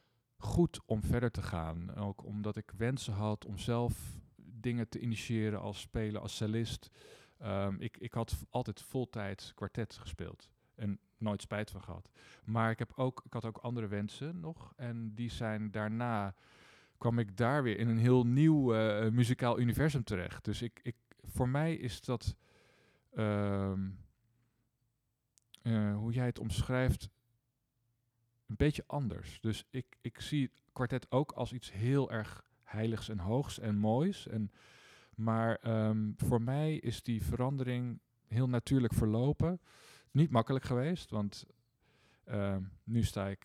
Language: Dutch